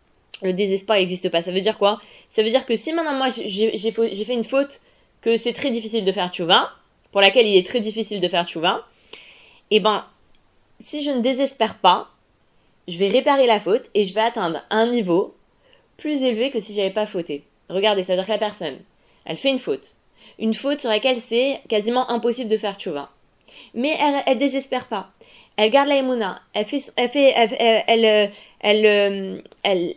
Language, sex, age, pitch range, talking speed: French, female, 20-39, 200-255 Hz, 200 wpm